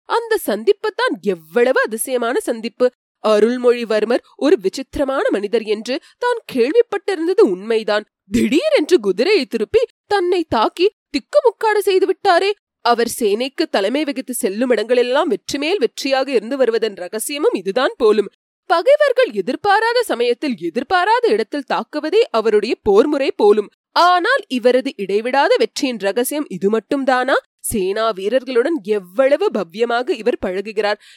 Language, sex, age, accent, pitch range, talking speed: Tamil, female, 30-49, native, 235-360 Hz, 110 wpm